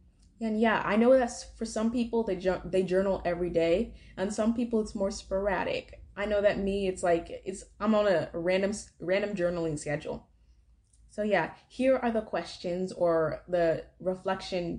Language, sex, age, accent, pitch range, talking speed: English, female, 20-39, American, 175-225 Hz, 175 wpm